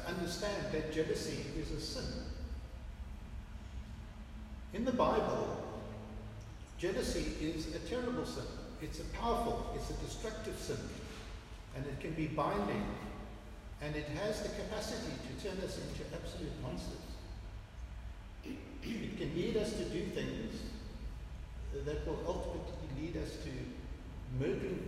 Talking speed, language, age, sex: 125 wpm, English, 60-79, male